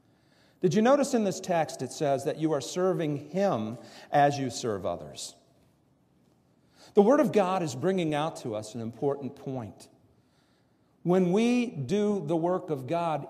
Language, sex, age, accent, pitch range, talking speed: English, male, 50-69, American, 135-190 Hz, 165 wpm